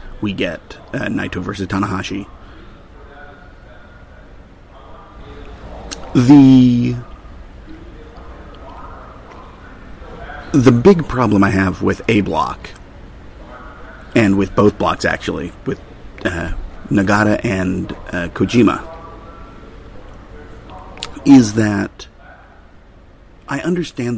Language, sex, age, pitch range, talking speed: English, male, 30-49, 95-110 Hz, 75 wpm